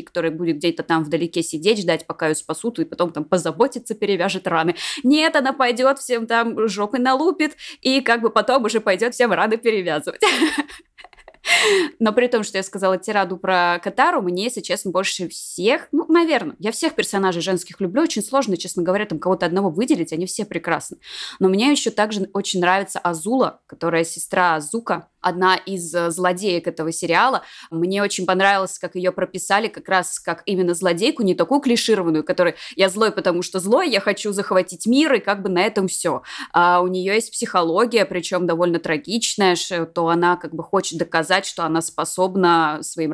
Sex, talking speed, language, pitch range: female, 175 wpm, Russian, 175-220 Hz